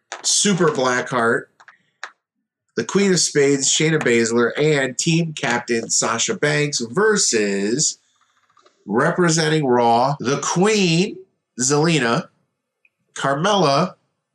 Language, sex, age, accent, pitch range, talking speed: English, male, 30-49, American, 110-150 Hz, 85 wpm